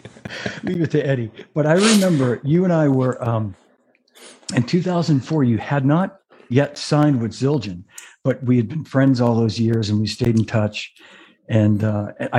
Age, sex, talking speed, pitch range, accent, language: 50-69, male, 175 wpm, 105-130 Hz, American, English